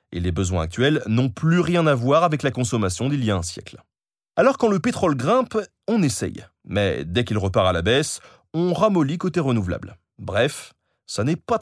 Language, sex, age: French, male, 30-49